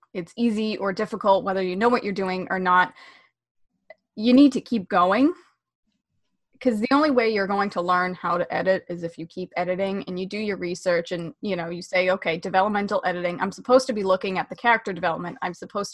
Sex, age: female, 20-39